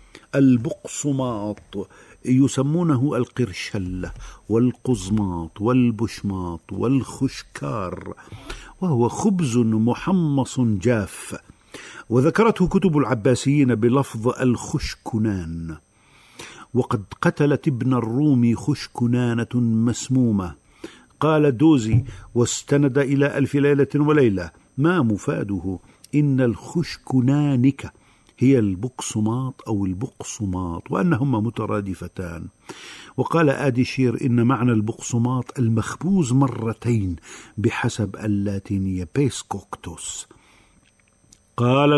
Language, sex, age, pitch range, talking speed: Arabic, male, 50-69, 100-135 Hz, 70 wpm